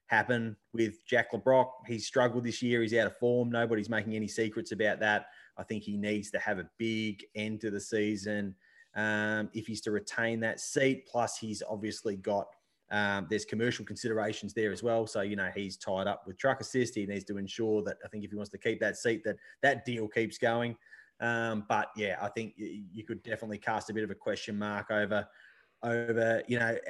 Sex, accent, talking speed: male, Australian, 210 wpm